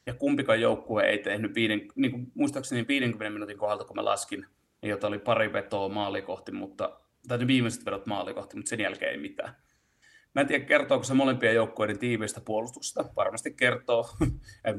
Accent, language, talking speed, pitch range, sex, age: native, Finnish, 170 wpm, 100-120 Hz, male, 30-49